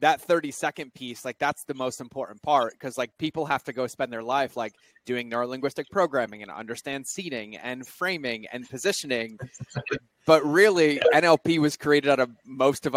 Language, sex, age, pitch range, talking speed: English, male, 20-39, 120-145 Hz, 180 wpm